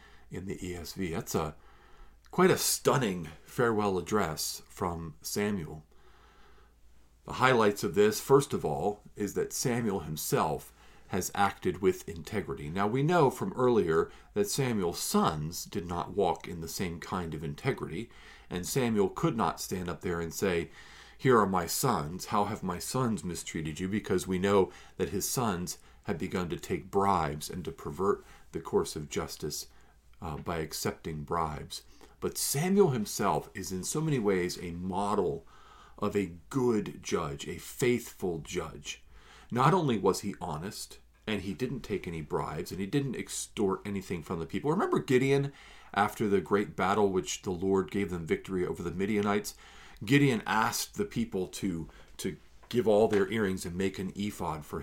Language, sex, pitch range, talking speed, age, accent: English, male, 80-105 Hz, 165 wpm, 50-69, American